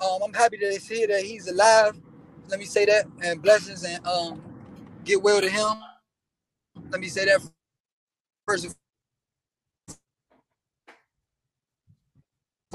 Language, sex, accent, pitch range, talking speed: English, male, American, 200-270 Hz, 120 wpm